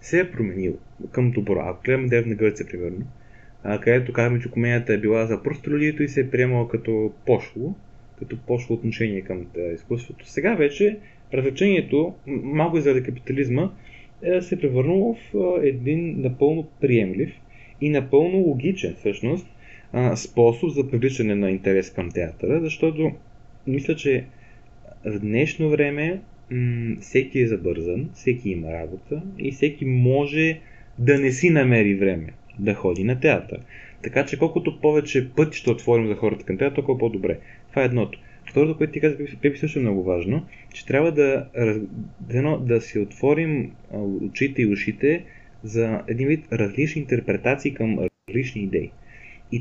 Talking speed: 150 wpm